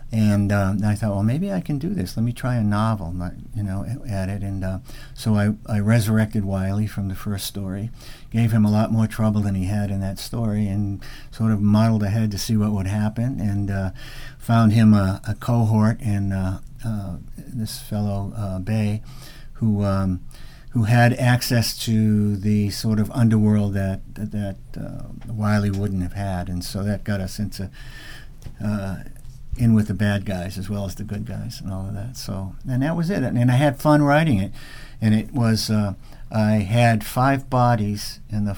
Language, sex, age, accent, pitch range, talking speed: English, male, 50-69, American, 100-120 Hz, 200 wpm